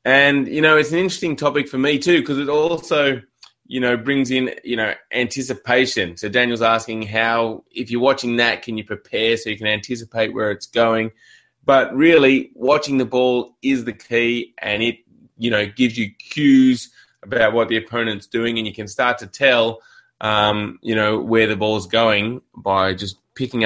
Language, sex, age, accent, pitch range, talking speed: English, male, 20-39, Australian, 110-135 Hz, 190 wpm